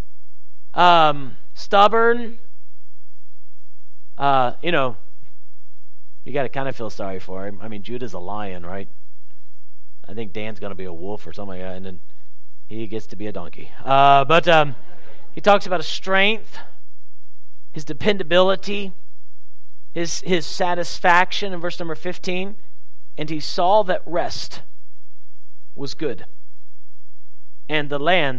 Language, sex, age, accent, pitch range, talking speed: English, male, 40-59, American, 120-155 Hz, 140 wpm